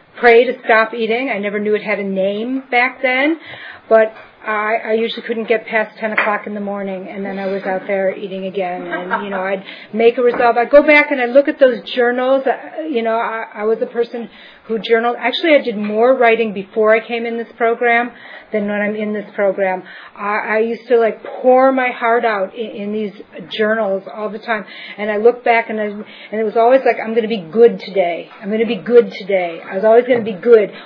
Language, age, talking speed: English, 40-59, 235 wpm